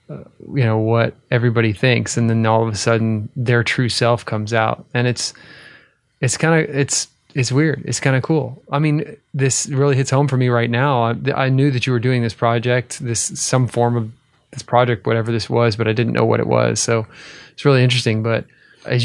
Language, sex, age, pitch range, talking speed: English, male, 20-39, 115-135 Hz, 220 wpm